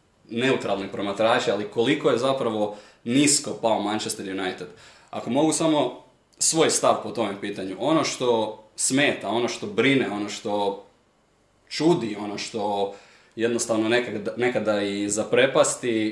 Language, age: Croatian, 20-39